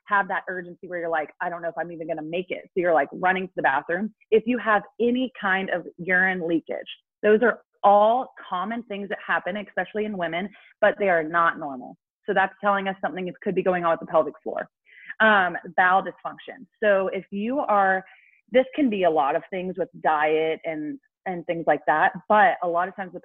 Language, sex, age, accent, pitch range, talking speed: English, female, 30-49, American, 170-205 Hz, 225 wpm